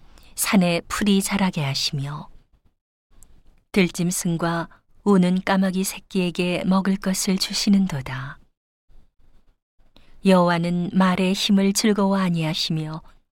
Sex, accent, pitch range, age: female, native, 155-185 Hz, 40-59